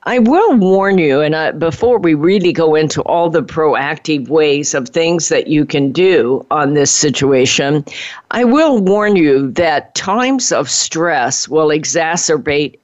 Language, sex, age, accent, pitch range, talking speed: English, female, 50-69, American, 145-170 Hz, 155 wpm